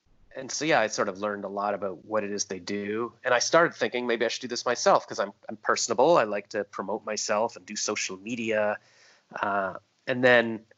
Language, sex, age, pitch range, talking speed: English, male, 30-49, 105-130 Hz, 230 wpm